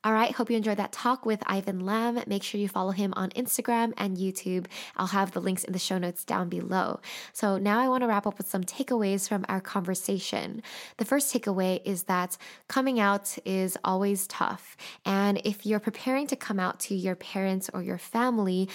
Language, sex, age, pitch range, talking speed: English, female, 10-29, 185-225 Hz, 205 wpm